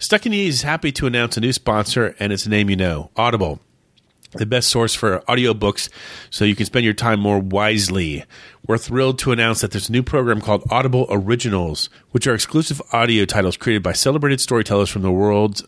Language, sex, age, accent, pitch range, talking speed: English, male, 30-49, American, 100-130 Hz, 205 wpm